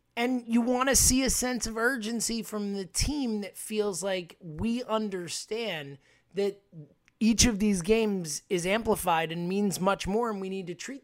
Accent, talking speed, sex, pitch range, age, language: American, 180 wpm, male, 180-220 Hz, 20-39, English